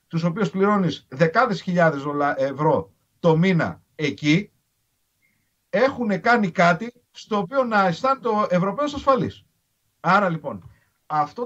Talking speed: 115 wpm